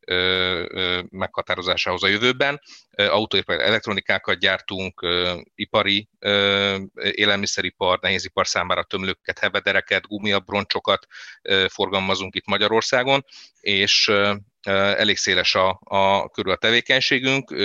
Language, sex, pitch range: Hungarian, male, 95-110 Hz